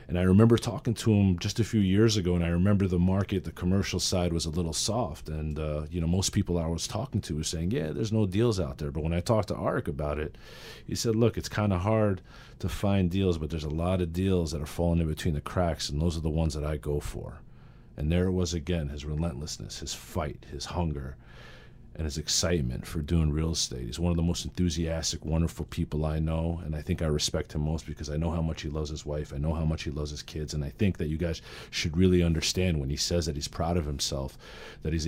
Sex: male